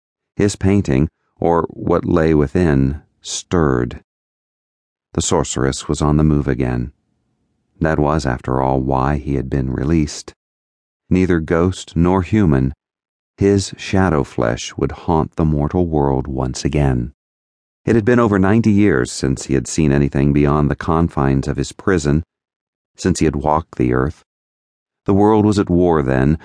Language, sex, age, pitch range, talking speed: English, male, 40-59, 65-85 Hz, 150 wpm